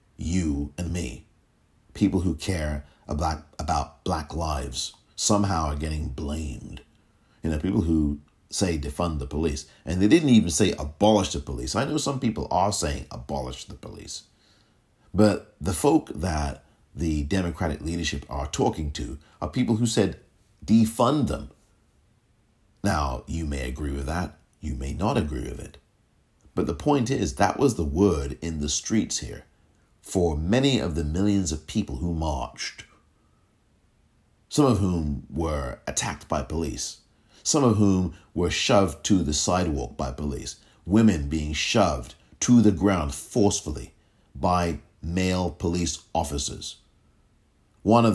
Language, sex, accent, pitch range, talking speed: English, male, American, 75-100 Hz, 145 wpm